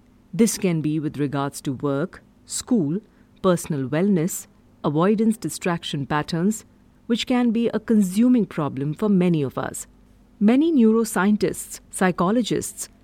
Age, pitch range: 50-69, 155-215 Hz